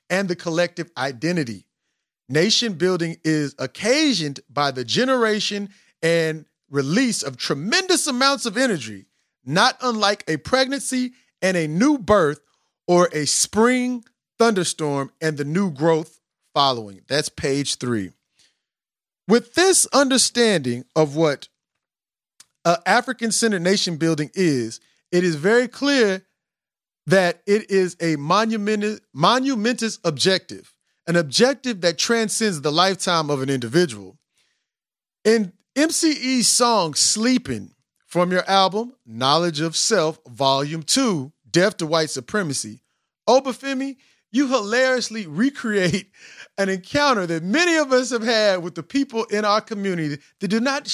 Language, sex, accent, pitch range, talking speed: English, male, American, 155-235 Hz, 125 wpm